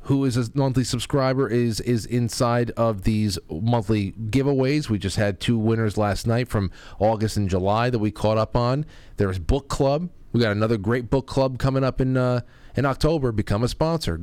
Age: 40-59